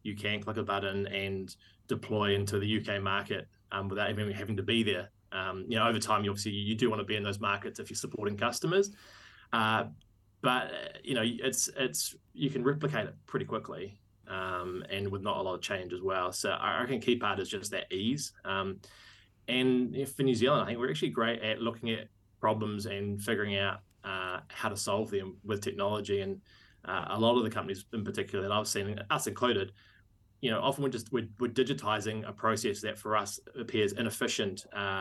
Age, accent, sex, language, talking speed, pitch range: 20-39, Australian, male, English, 205 wpm, 100-115 Hz